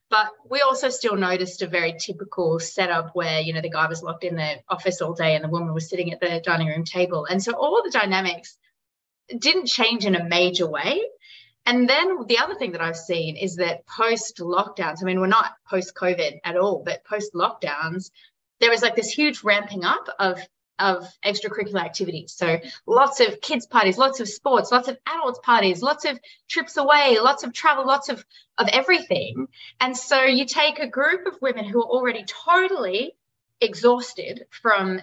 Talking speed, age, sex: 195 wpm, 30-49, female